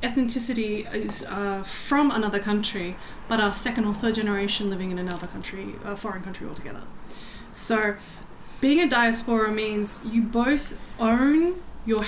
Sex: female